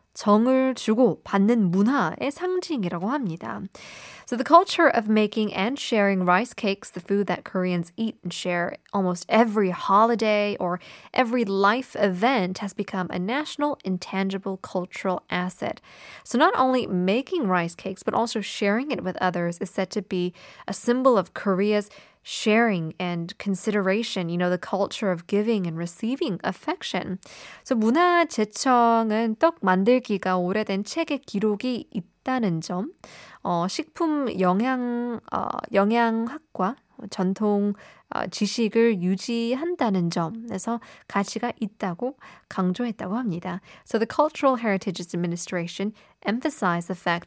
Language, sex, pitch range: Korean, female, 185-235 Hz